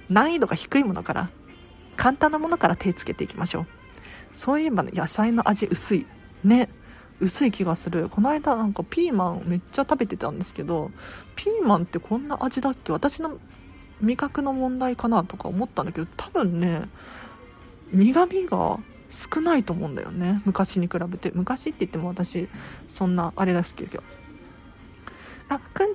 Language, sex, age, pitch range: Japanese, female, 40-59, 180-255 Hz